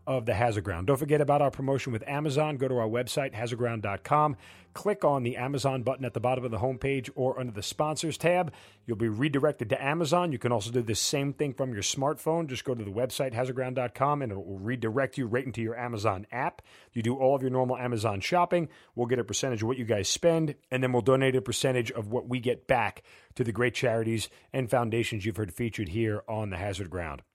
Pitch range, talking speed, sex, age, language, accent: 110-135 Hz, 230 wpm, male, 40-59, English, American